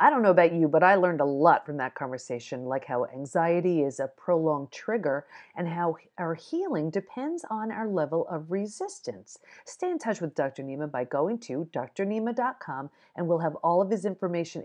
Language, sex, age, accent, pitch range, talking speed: English, female, 40-59, American, 155-235 Hz, 195 wpm